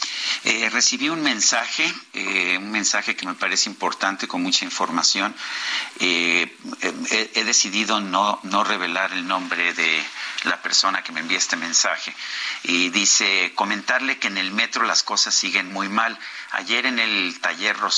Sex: male